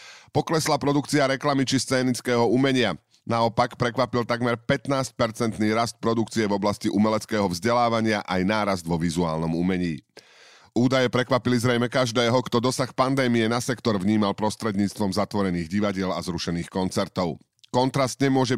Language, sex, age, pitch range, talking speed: Slovak, male, 40-59, 105-130 Hz, 125 wpm